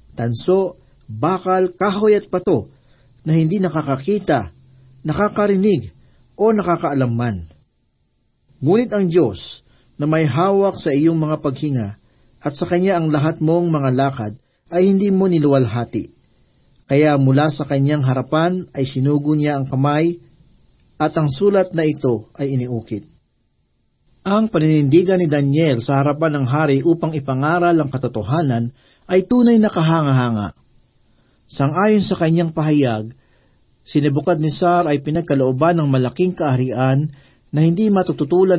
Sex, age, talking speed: male, 50-69, 125 wpm